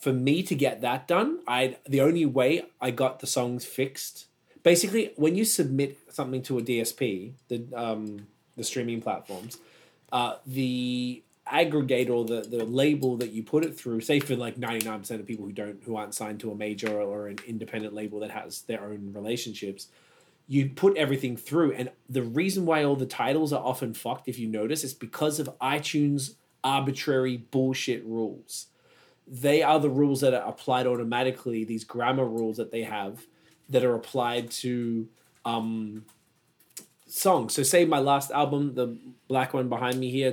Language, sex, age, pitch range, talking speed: English, male, 20-39, 115-140 Hz, 175 wpm